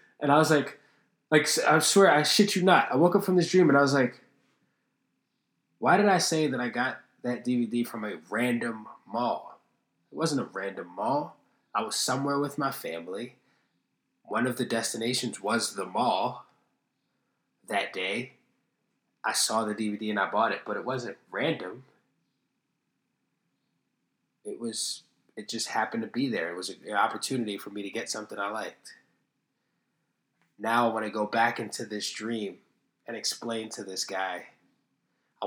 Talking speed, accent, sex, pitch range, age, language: 170 wpm, American, male, 105-140 Hz, 20-39, English